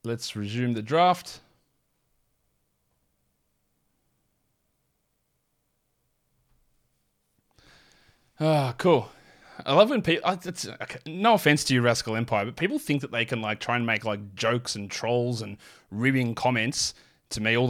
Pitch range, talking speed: 115-150 Hz, 130 wpm